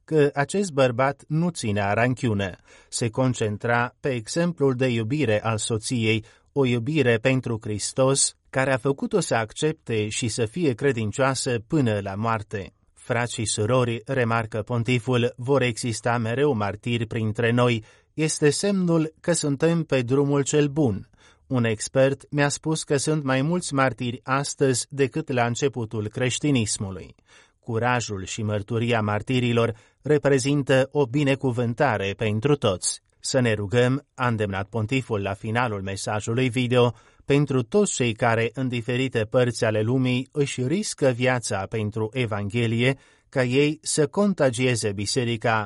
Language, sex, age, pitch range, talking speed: Romanian, male, 30-49, 110-140 Hz, 135 wpm